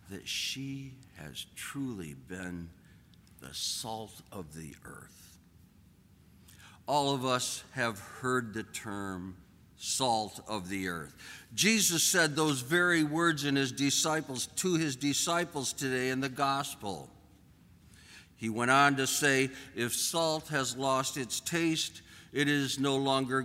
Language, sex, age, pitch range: English, male, 60-79, 100-145 Hz